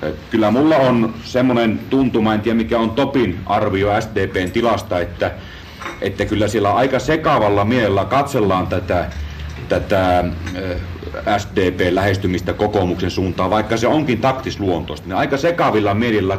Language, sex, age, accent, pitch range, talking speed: Finnish, male, 40-59, native, 95-125 Hz, 120 wpm